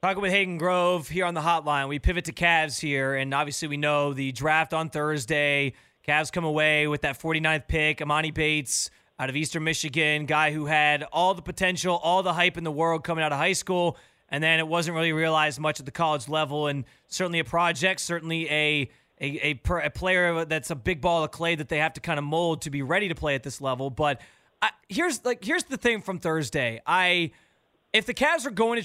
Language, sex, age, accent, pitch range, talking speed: English, male, 20-39, American, 155-190 Hz, 230 wpm